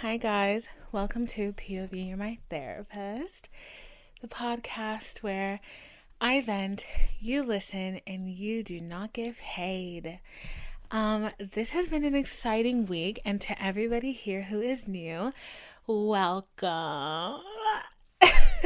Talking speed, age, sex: 115 wpm, 20-39, female